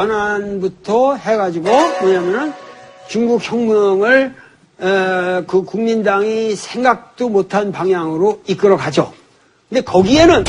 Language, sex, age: Korean, male, 40-59